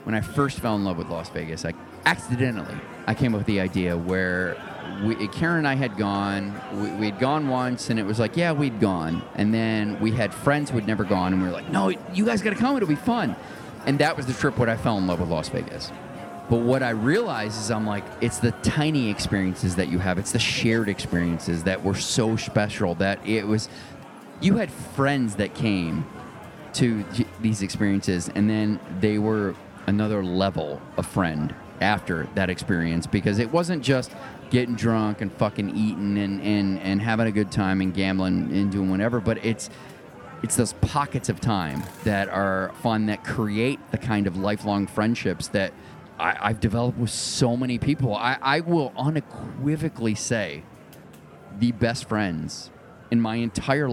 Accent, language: American, English